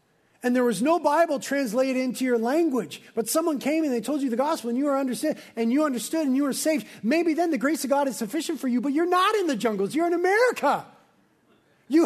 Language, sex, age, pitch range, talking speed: English, male, 40-59, 180-270 Hz, 240 wpm